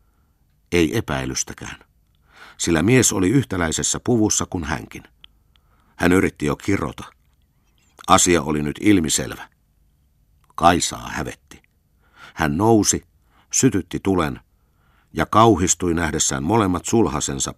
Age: 60-79